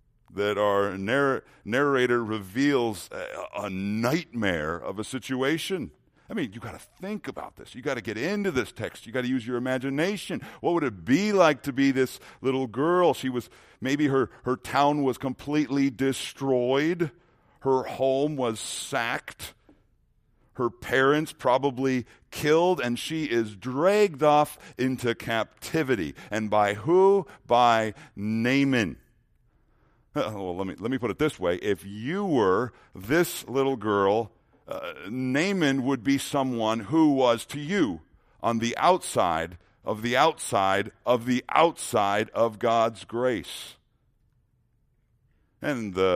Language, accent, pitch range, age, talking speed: English, American, 110-140 Hz, 50-69, 140 wpm